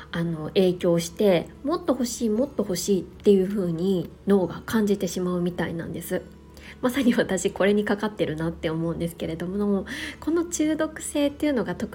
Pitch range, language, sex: 165-245 Hz, Japanese, female